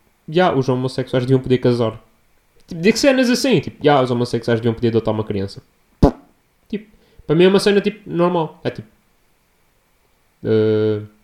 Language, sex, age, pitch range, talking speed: Portuguese, male, 20-39, 130-205 Hz, 165 wpm